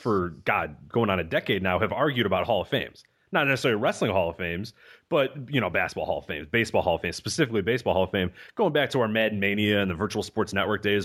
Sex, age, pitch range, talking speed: male, 30-49, 105-150 Hz, 255 wpm